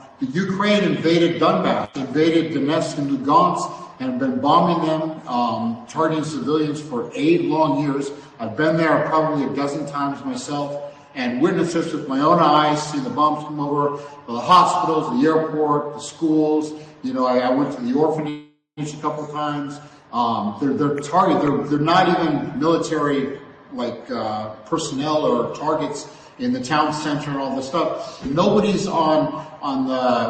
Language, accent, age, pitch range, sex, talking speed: Russian, American, 50-69, 145-160 Hz, male, 160 wpm